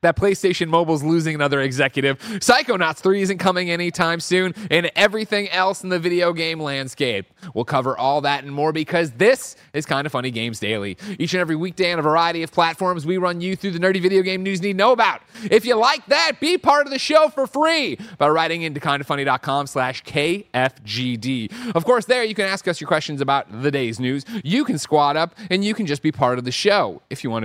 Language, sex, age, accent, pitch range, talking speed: English, male, 30-49, American, 135-195 Hz, 225 wpm